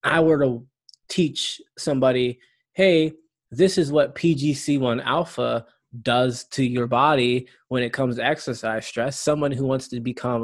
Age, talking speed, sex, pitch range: 20-39, 150 wpm, male, 115-140 Hz